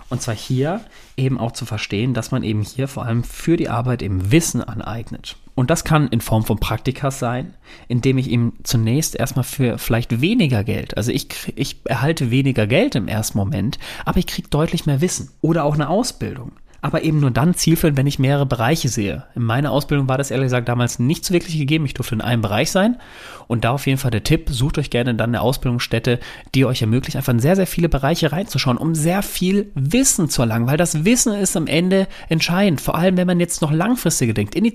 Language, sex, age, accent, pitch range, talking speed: German, male, 30-49, German, 120-165 Hz, 225 wpm